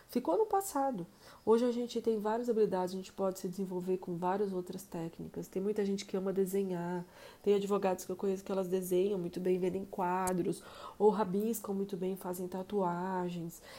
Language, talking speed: Portuguese, 185 wpm